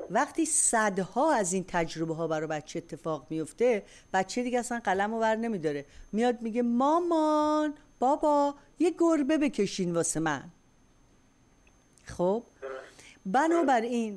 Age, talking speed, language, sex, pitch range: 50-69, 110 wpm, Persian, female, 170-245 Hz